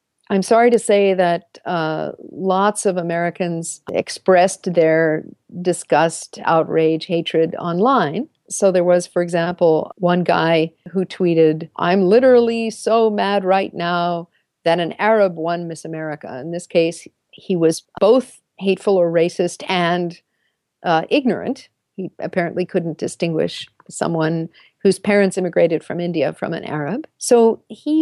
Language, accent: English, American